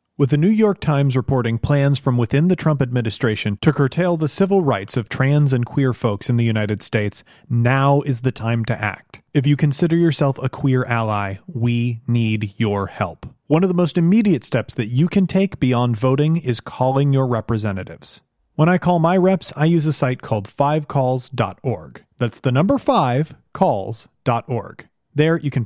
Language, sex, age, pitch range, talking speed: English, male, 30-49, 115-150 Hz, 180 wpm